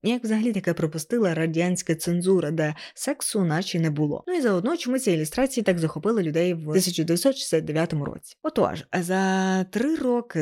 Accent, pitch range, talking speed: native, 160-210 Hz, 155 wpm